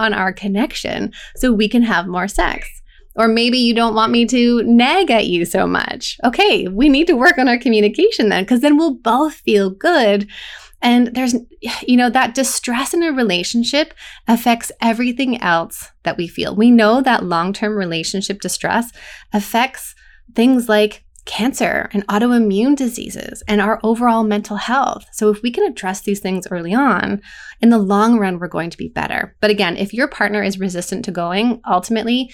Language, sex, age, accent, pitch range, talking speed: English, female, 20-39, American, 195-245 Hz, 180 wpm